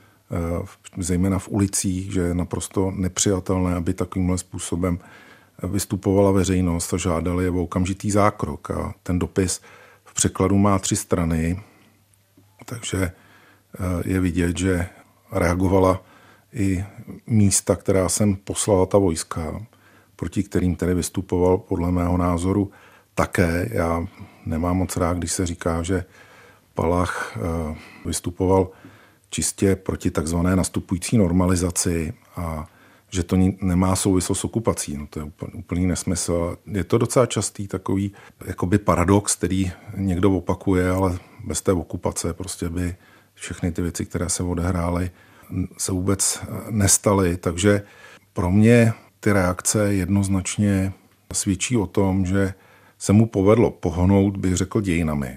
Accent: native